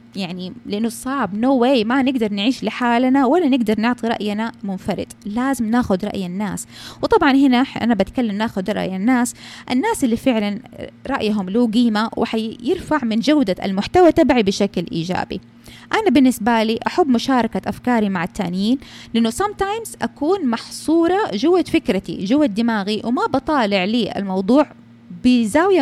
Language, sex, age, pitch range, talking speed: Arabic, female, 20-39, 195-265 Hz, 140 wpm